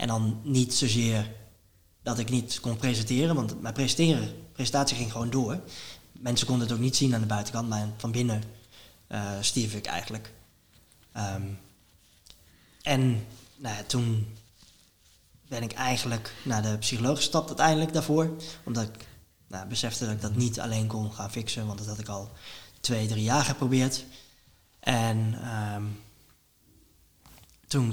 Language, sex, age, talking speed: Dutch, male, 20-39, 135 wpm